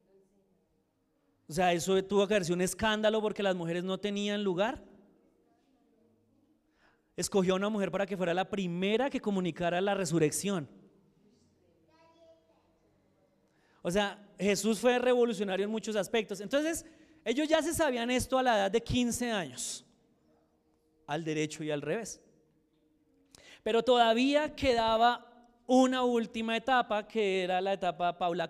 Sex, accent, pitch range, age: male, Colombian, 190-245 Hz, 30-49